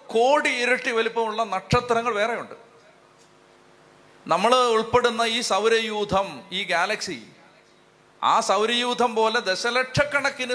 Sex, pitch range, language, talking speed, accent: male, 190-255 Hz, Malayalam, 85 wpm, native